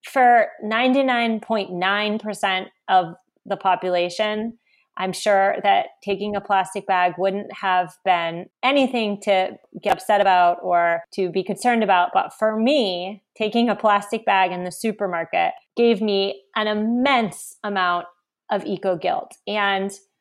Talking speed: 130 wpm